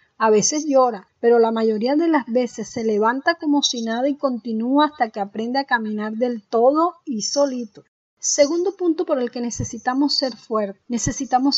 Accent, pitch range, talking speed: American, 220-275 Hz, 175 wpm